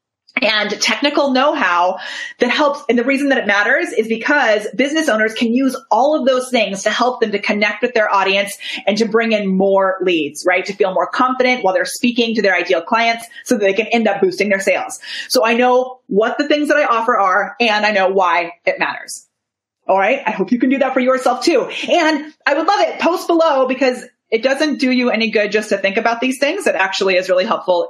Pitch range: 200-280 Hz